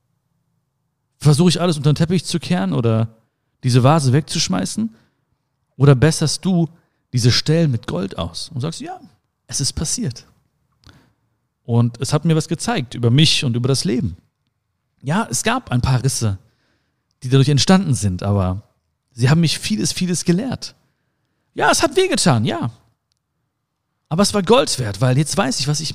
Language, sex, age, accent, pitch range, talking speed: German, male, 50-69, German, 125-170 Hz, 165 wpm